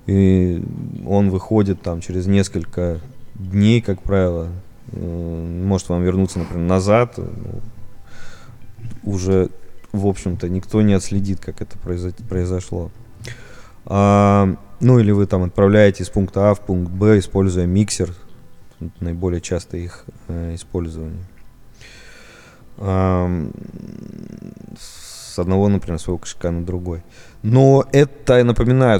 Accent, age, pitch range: native, 20-39, 90-105 Hz